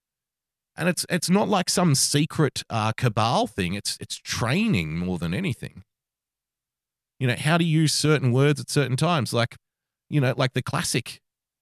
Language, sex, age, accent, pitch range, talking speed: English, male, 30-49, Australian, 115-150 Hz, 165 wpm